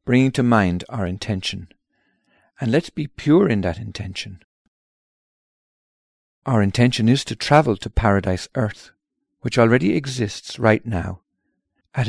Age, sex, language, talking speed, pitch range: 50-69, male, English, 130 wpm, 95-125 Hz